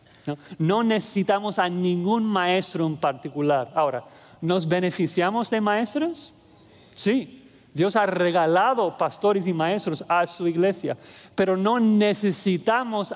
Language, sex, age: English, male, 40-59